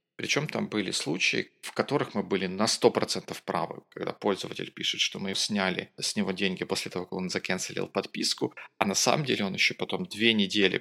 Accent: native